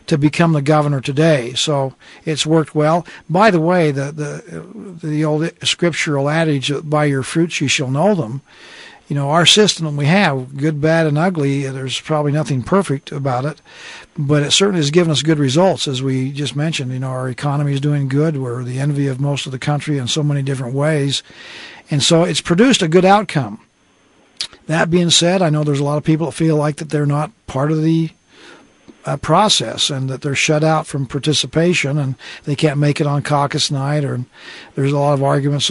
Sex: male